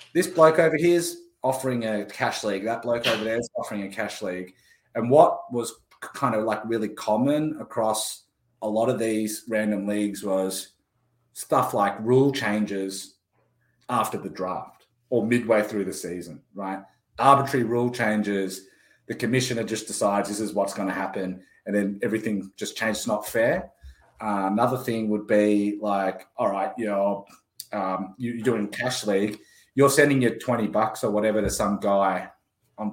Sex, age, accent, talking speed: male, 30-49, Australian, 170 wpm